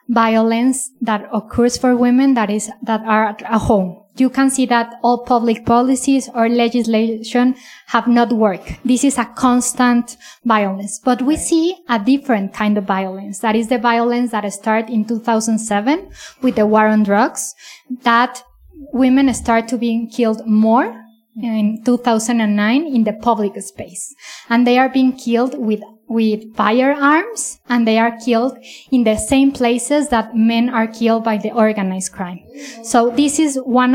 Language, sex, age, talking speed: English, female, 20-39, 160 wpm